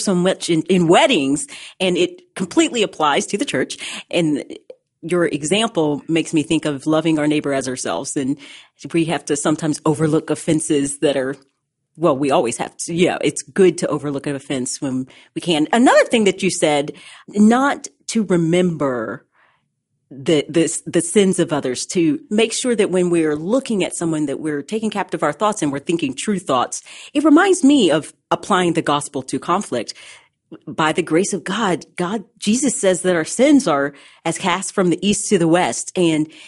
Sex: female